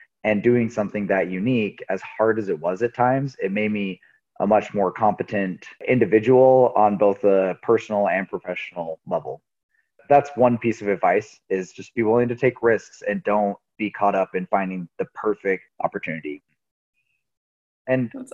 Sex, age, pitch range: male, 20-39, 100-115 Hz